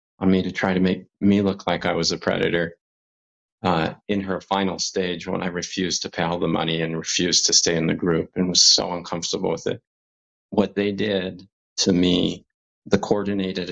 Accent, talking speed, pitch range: American, 200 wpm, 85-95 Hz